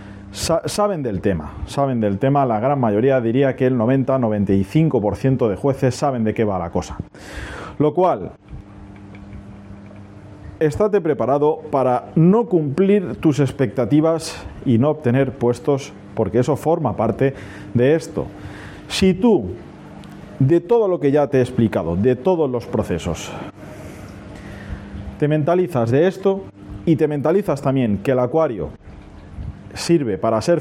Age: 40-59